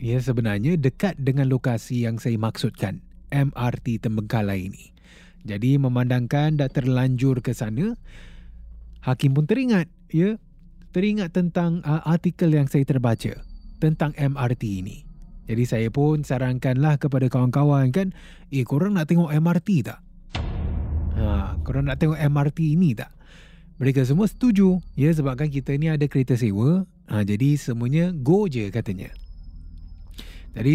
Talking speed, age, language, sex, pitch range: 135 wpm, 20-39, Malay, male, 110-160 Hz